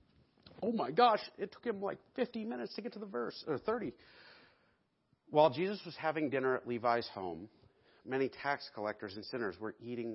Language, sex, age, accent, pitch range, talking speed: English, male, 50-69, American, 105-135 Hz, 185 wpm